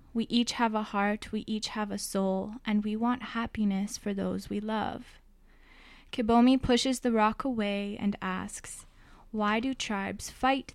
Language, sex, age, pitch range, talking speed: English, female, 10-29, 200-245 Hz, 160 wpm